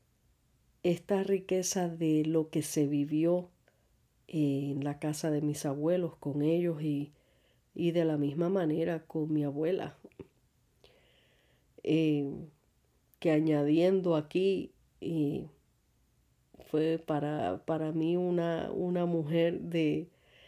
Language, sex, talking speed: Spanish, female, 110 wpm